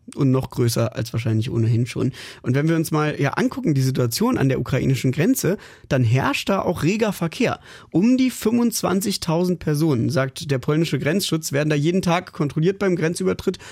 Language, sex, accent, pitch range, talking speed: German, male, German, 135-175 Hz, 180 wpm